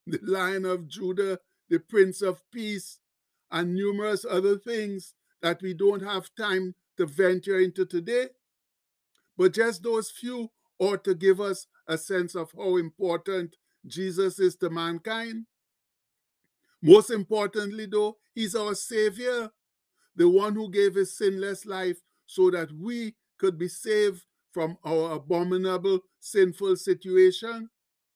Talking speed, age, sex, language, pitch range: 130 wpm, 60-79, male, English, 185-215 Hz